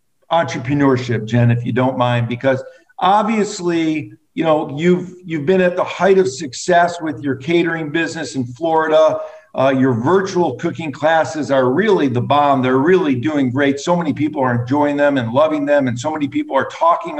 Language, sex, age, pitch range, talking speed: English, male, 50-69, 140-185 Hz, 180 wpm